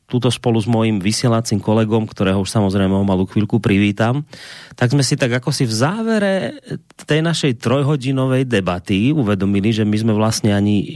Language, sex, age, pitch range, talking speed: Slovak, male, 30-49, 110-150 Hz, 170 wpm